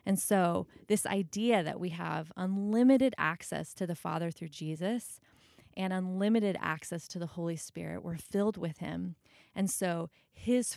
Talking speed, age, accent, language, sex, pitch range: 155 wpm, 20-39, American, English, female, 160-195 Hz